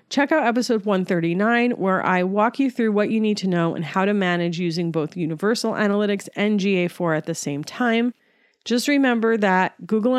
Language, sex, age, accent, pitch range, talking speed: English, female, 40-59, American, 185-255 Hz, 190 wpm